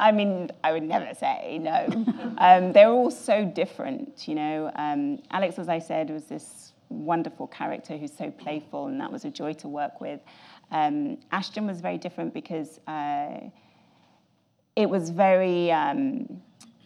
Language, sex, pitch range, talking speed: English, female, 160-235 Hz, 155 wpm